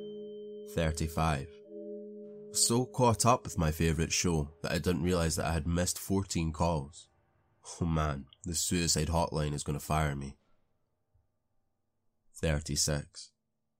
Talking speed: 125 wpm